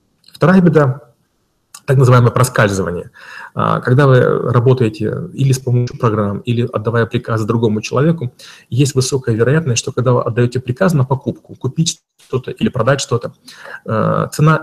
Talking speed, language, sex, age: 135 wpm, Russian, male, 30-49